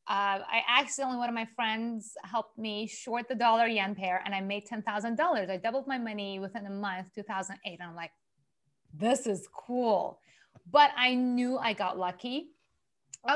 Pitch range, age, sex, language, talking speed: 190-230 Hz, 30-49, female, English, 175 wpm